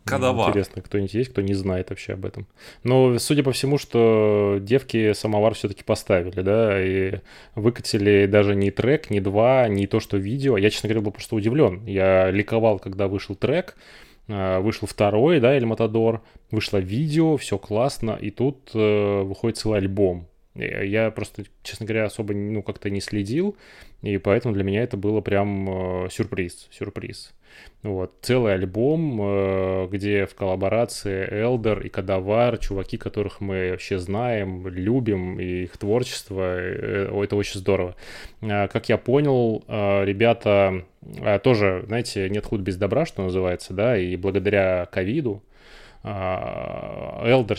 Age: 20-39